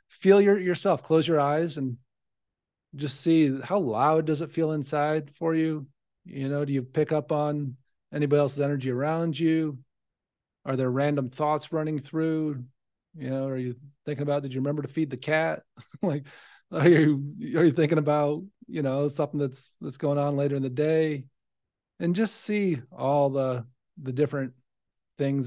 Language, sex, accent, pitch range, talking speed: English, male, American, 135-165 Hz, 175 wpm